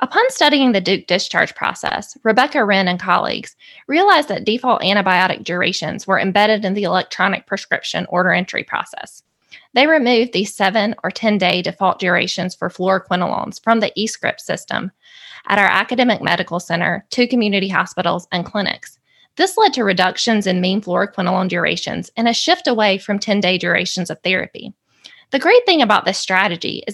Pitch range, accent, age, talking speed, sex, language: 185-230 Hz, American, 20-39, 160 wpm, female, English